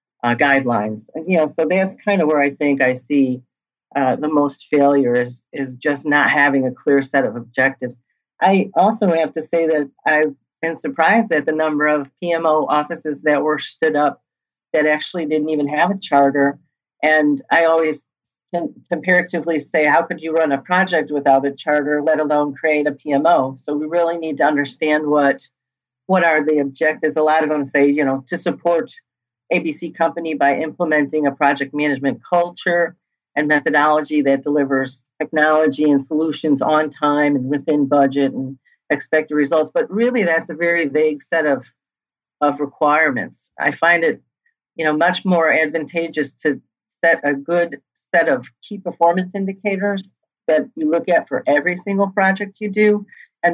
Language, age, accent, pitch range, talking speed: English, 40-59, American, 140-165 Hz, 170 wpm